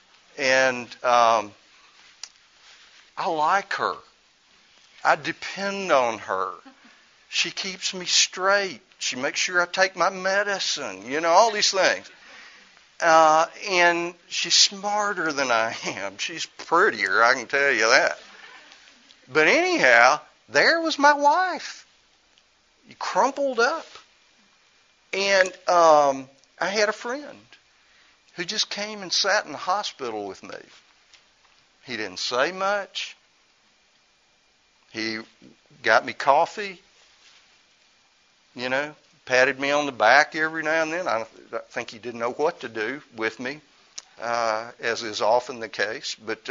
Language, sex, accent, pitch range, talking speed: English, male, American, 135-205 Hz, 130 wpm